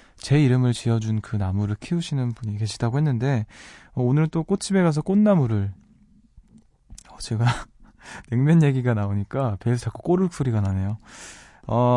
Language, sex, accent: Korean, male, native